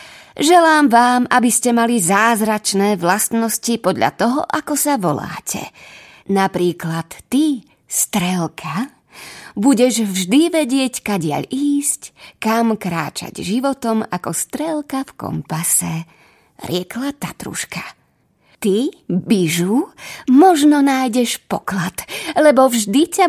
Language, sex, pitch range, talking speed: Slovak, female, 190-275 Hz, 95 wpm